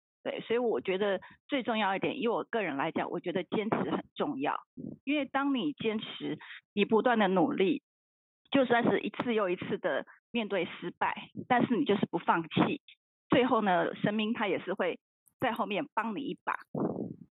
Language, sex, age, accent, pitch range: Chinese, female, 30-49, native, 180-240 Hz